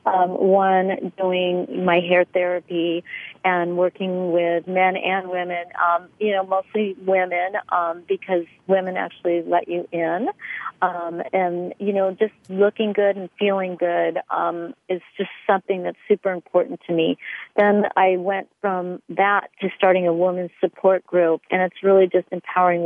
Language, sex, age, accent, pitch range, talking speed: English, female, 40-59, American, 175-195 Hz, 155 wpm